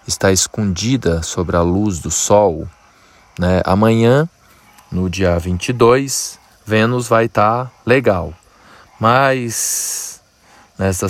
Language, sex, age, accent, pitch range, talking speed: Portuguese, male, 20-39, Brazilian, 90-110 Hz, 95 wpm